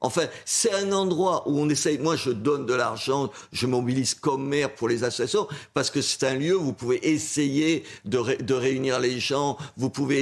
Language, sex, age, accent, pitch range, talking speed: French, male, 50-69, French, 125-160 Hz, 200 wpm